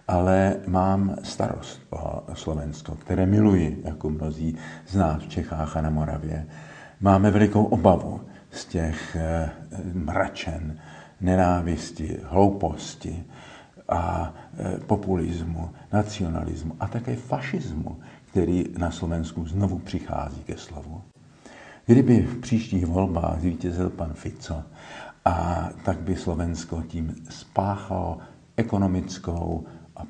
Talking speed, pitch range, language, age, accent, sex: 105 wpm, 80-95 Hz, Czech, 50-69, native, male